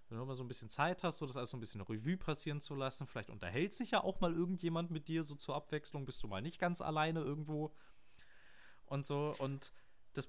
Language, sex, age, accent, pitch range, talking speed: German, male, 30-49, German, 125-160 Hz, 240 wpm